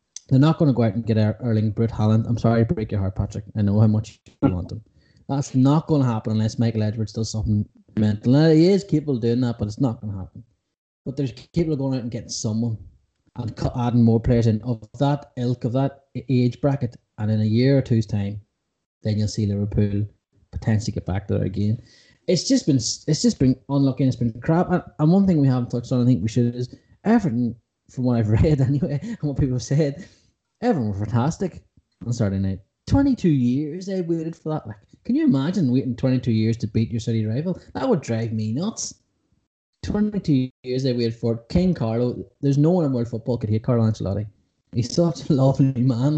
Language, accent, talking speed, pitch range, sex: English, Irish, 225 wpm, 110-140 Hz, male